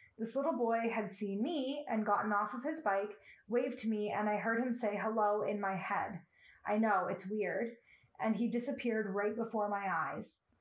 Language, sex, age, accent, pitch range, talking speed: English, female, 20-39, American, 210-240 Hz, 200 wpm